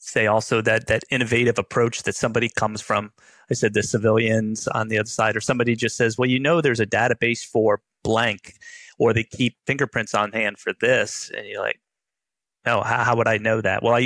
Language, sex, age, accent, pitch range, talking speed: English, male, 30-49, American, 105-120 Hz, 220 wpm